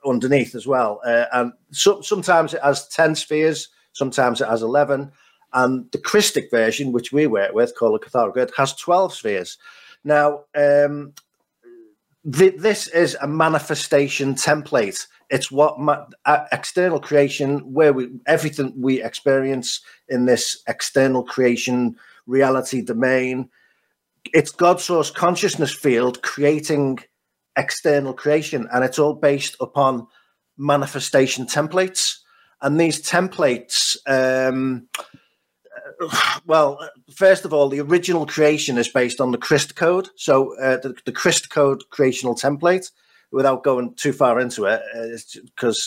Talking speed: 130 wpm